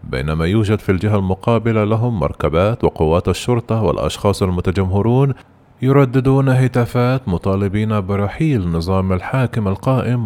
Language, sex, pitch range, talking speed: Arabic, male, 95-115 Hz, 105 wpm